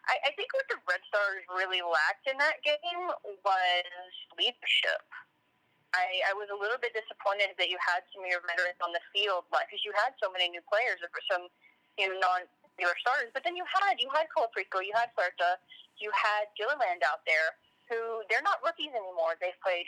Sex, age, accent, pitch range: female, 20-39, American, 175-210 Hz